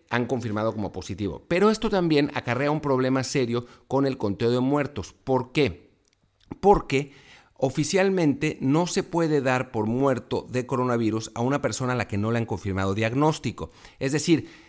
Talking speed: 170 wpm